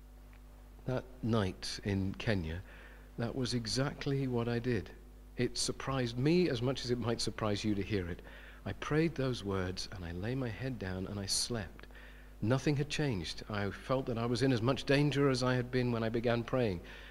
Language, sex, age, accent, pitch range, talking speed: English, male, 50-69, British, 105-135 Hz, 195 wpm